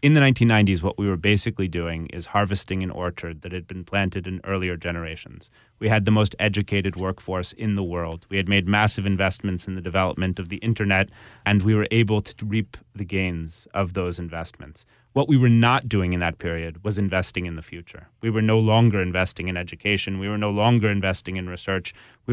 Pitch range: 90-115 Hz